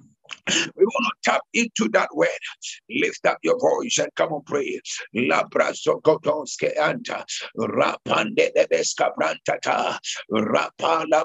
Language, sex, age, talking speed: English, male, 60-79, 115 wpm